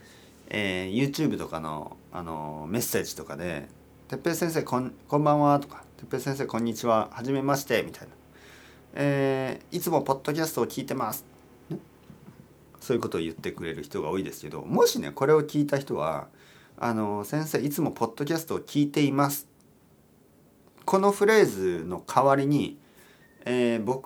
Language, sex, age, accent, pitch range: Japanese, male, 40-59, native, 125-155 Hz